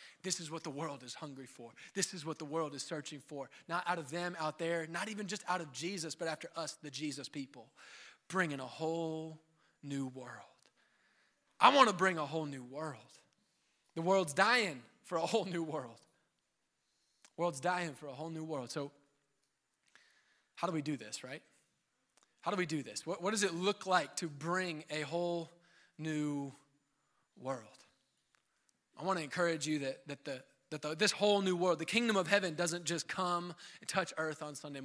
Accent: American